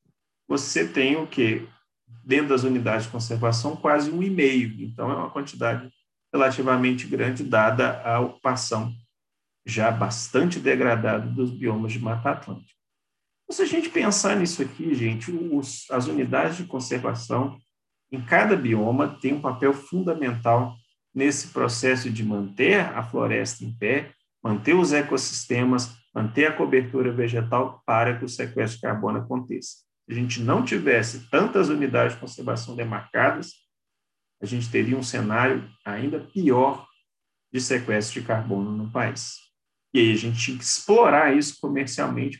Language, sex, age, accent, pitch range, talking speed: Portuguese, male, 40-59, Brazilian, 115-145 Hz, 145 wpm